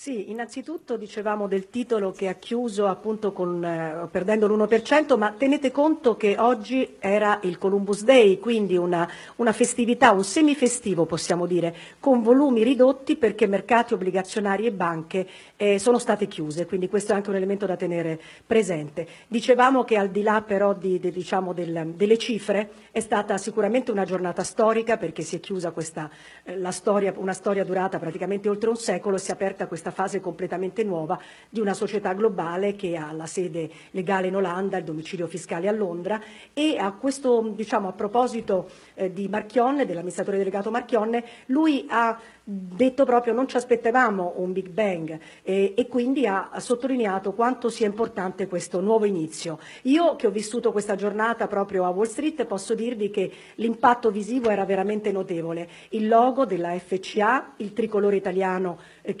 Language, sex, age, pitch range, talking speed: Italian, female, 50-69, 185-230 Hz, 170 wpm